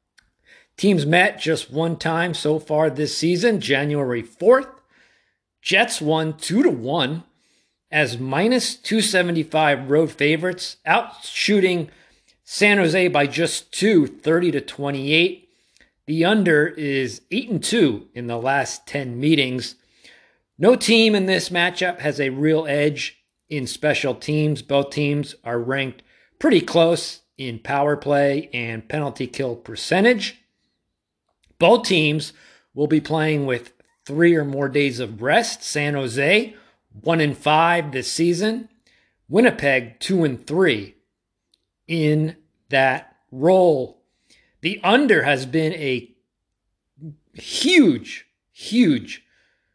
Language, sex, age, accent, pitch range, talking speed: English, male, 50-69, American, 130-175 Hz, 110 wpm